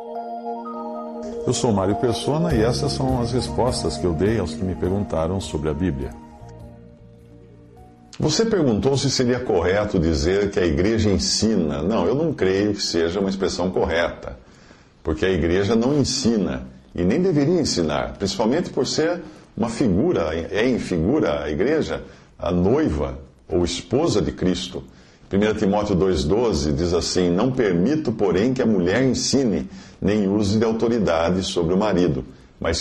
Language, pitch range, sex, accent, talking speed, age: Portuguese, 75-110 Hz, male, Brazilian, 150 wpm, 50-69